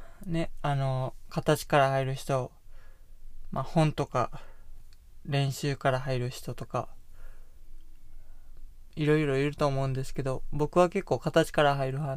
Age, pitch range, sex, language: 20-39, 130-155 Hz, male, Japanese